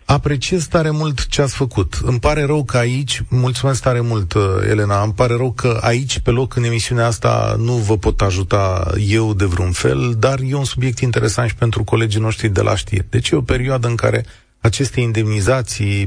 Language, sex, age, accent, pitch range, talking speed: Romanian, male, 30-49, native, 100-130 Hz, 200 wpm